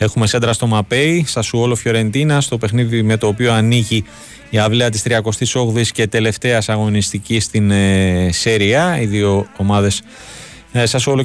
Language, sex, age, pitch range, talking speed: Greek, male, 30-49, 105-125 Hz, 150 wpm